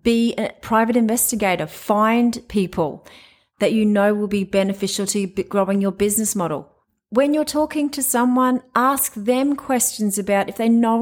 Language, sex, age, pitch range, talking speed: English, female, 30-49, 200-245 Hz, 160 wpm